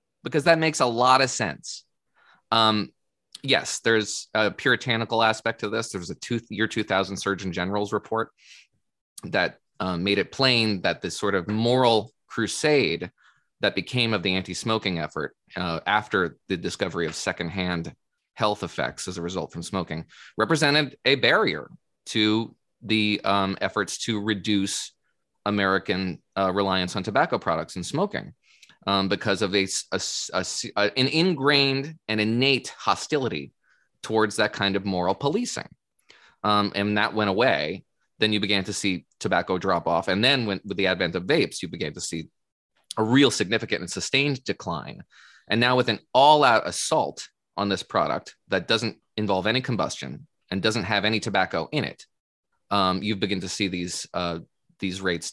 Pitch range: 95-115 Hz